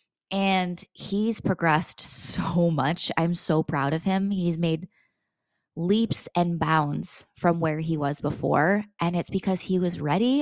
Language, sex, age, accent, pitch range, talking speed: English, female, 20-39, American, 165-210 Hz, 150 wpm